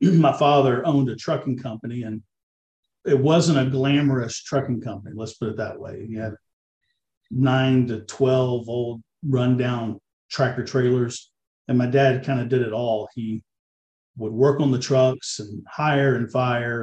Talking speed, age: 160 wpm, 50-69